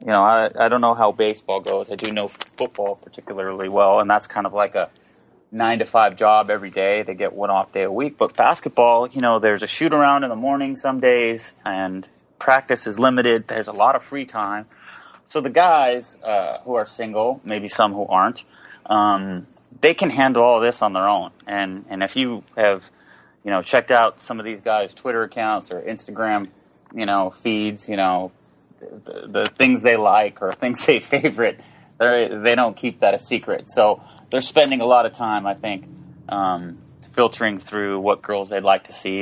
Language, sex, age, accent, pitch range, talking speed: English, male, 30-49, American, 95-120 Hz, 200 wpm